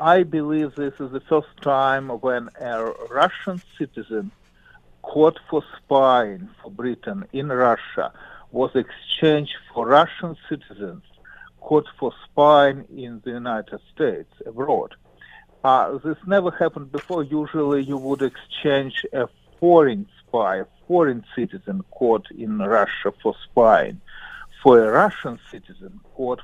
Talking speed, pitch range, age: 125 wpm, 125-155 Hz, 50-69